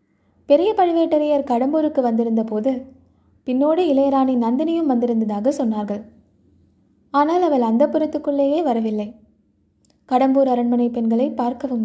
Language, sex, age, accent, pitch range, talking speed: Tamil, female, 20-39, native, 230-285 Hz, 95 wpm